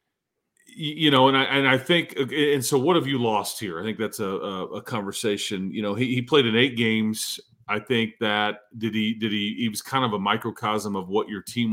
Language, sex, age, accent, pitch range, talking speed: English, male, 40-59, American, 110-125 Hz, 235 wpm